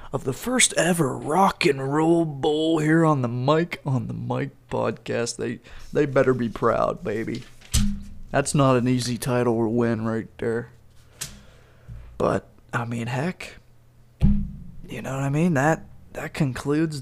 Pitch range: 120-135 Hz